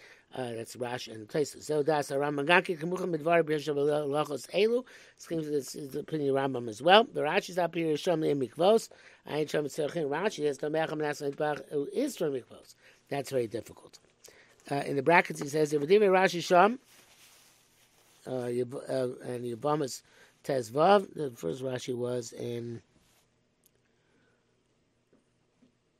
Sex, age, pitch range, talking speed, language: male, 60-79, 135-175 Hz, 60 wpm, English